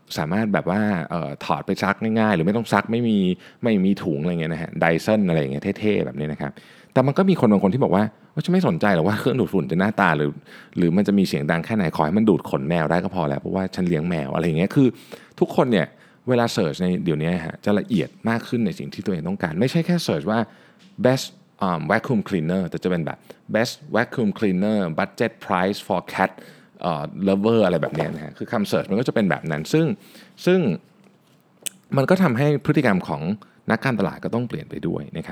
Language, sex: Thai, male